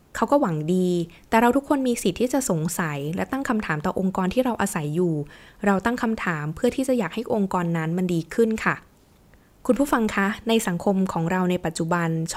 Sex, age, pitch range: female, 20-39, 170-215 Hz